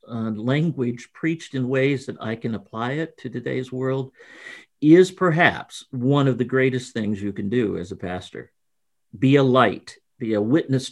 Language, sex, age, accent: English, male, 50-69, American